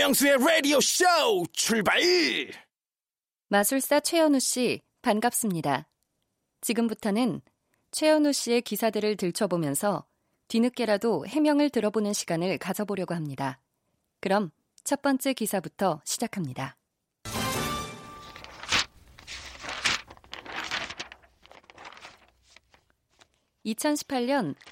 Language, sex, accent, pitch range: Korean, female, native, 185-265 Hz